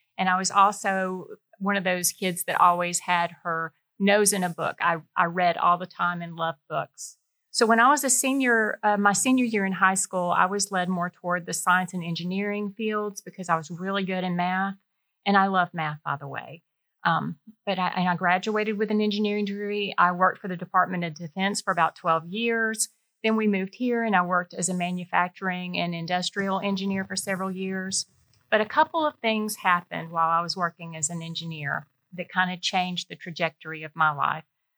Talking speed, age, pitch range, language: 205 wpm, 40-59, 170-205 Hz, English